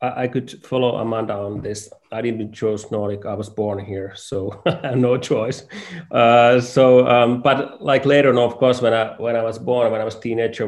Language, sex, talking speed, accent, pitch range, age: English, male, 215 wpm, Finnish, 100-120 Hz, 30-49